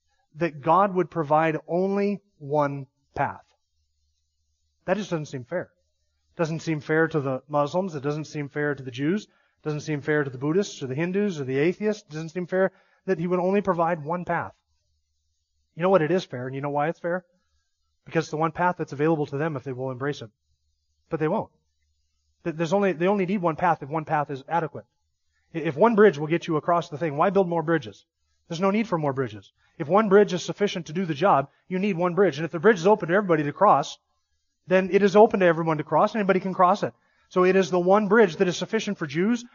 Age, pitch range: 30-49, 135-195 Hz